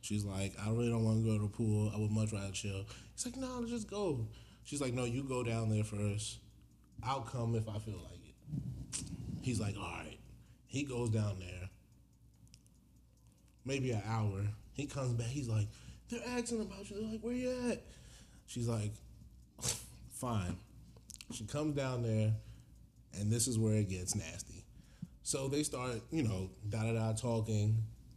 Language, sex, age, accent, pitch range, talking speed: English, male, 20-39, American, 105-135 Hz, 175 wpm